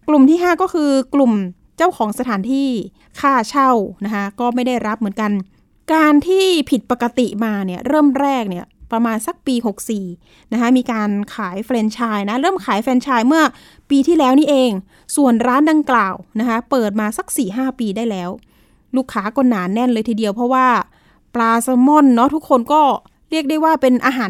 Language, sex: Thai, female